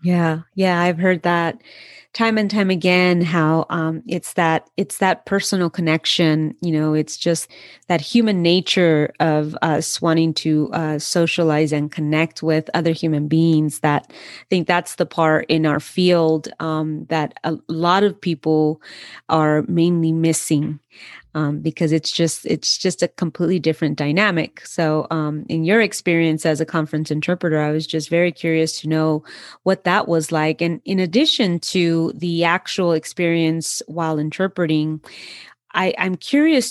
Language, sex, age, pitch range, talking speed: English, female, 30-49, 155-175 Hz, 155 wpm